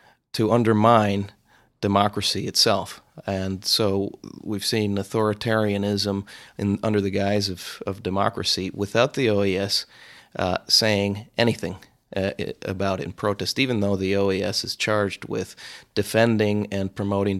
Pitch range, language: 95-110 Hz, English